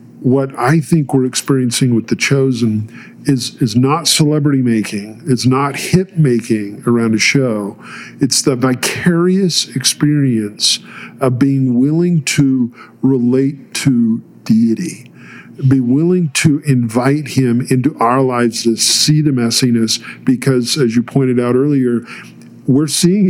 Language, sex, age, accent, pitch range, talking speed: English, male, 50-69, American, 120-155 Hz, 125 wpm